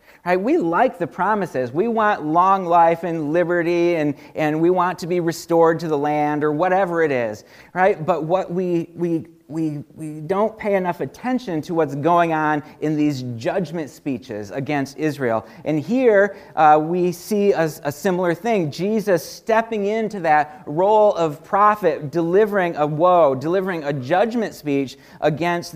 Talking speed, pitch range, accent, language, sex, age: 165 wpm, 155-205 Hz, American, English, male, 40-59